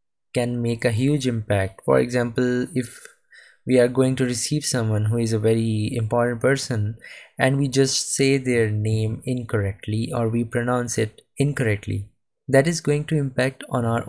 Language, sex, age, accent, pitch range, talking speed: English, male, 20-39, Indian, 110-130 Hz, 165 wpm